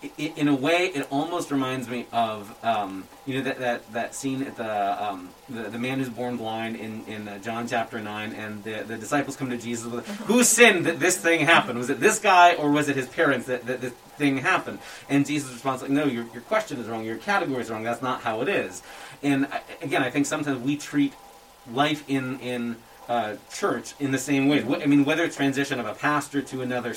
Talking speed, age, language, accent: 225 wpm, 30-49, English, American